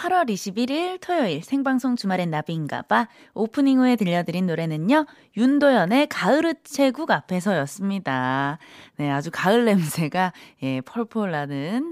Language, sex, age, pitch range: Korean, female, 20-39, 175-260 Hz